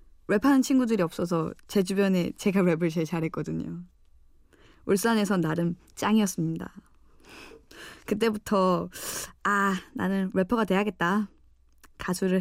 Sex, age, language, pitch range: female, 20-39, Korean, 165-215 Hz